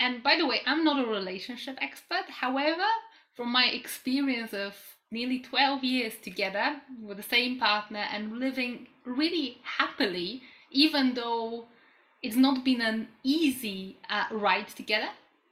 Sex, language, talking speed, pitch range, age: female, English, 140 wpm, 210-265 Hz, 20-39